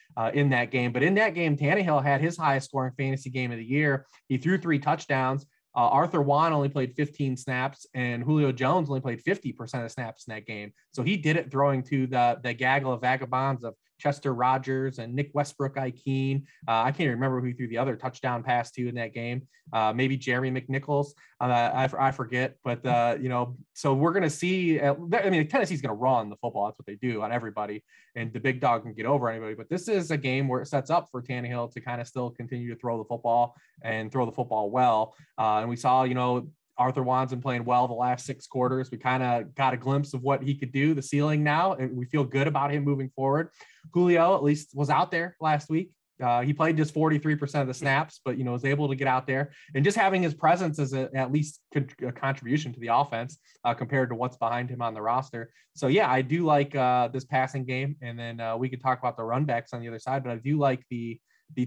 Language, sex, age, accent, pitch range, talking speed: English, male, 20-39, American, 120-145 Hz, 240 wpm